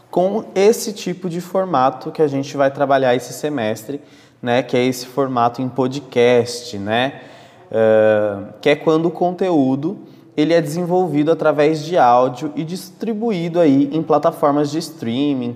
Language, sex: Portuguese, male